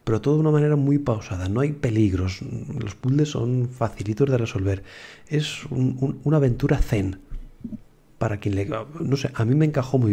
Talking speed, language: 180 wpm, Spanish